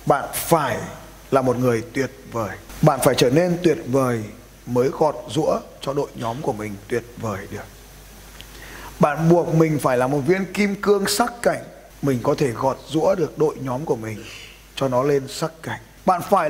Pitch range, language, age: 125-170 Hz, Vietnamese, 20-39